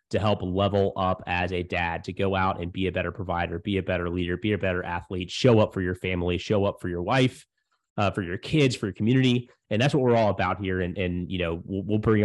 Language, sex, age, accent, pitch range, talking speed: English, male, 30-49, American, 90-105 Hz, 265 wpm